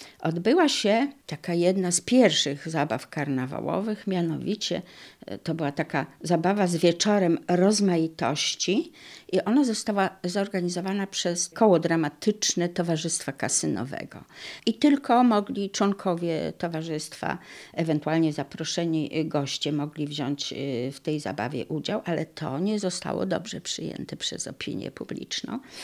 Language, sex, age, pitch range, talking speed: Polish, female, 50-69, 150-185 Hz, 110 wpm